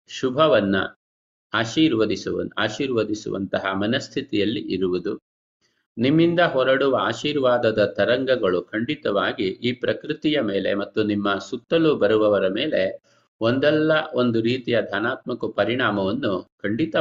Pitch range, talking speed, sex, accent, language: 105-140 Hz, 85 wpm, male, native, Kannada